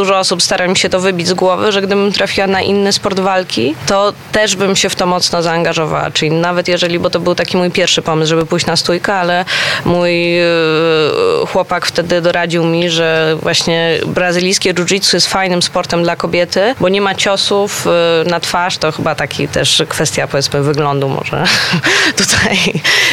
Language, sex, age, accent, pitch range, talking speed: Polish, female, 20-39, native, 165-190 Hz, 175 wpm